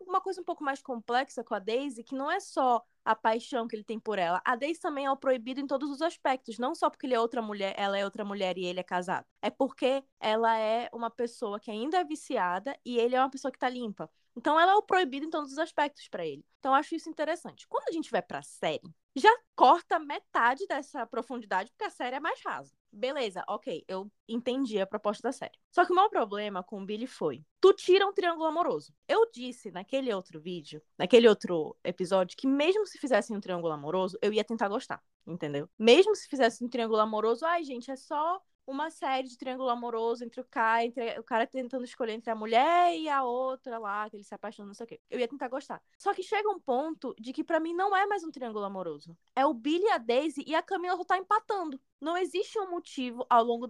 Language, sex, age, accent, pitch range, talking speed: Portuguese, female, 20-39, Brazilian, 225-320 Hz, 235 wpm